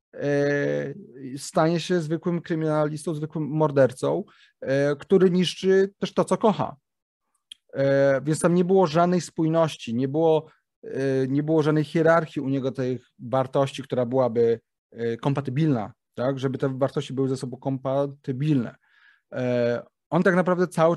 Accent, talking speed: native, 120 wpm